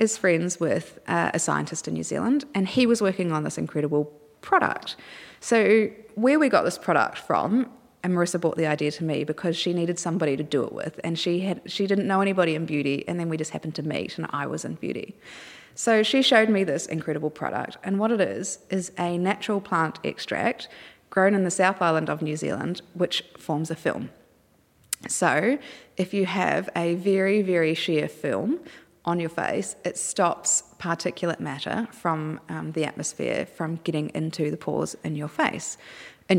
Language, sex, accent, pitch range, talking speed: English, female, Australian, 160-205 Hz, 190 wpm